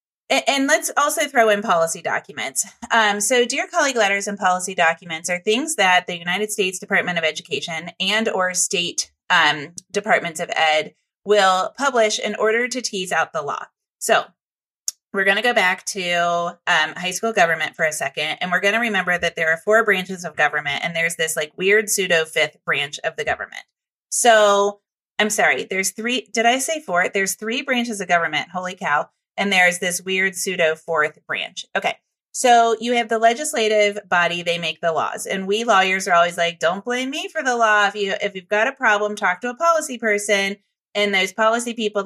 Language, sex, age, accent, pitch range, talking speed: English, female, 30-49, American, 175-225 Hz, 200 wpm